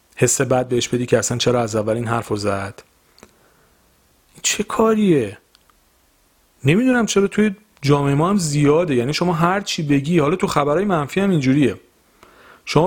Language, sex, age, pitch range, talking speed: Persian, male, 40-59, 125-185 Hz, 155 wpm